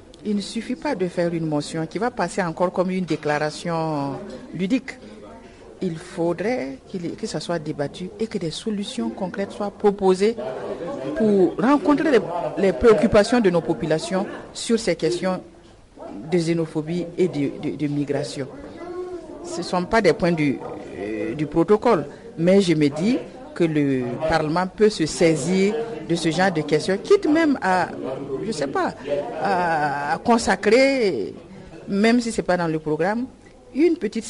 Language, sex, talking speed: French, female, 155 wpm